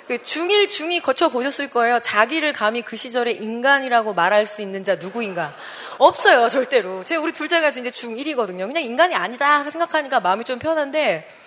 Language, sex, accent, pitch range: Korean, female, native, 180-295 Hz